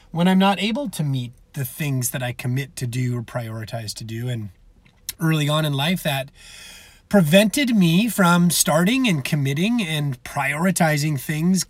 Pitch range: 135-195 Hz